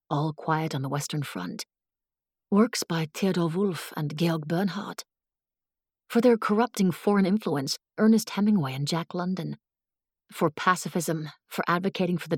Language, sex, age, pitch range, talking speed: English, female, 30-49, 165-235 Hz, 140 wpm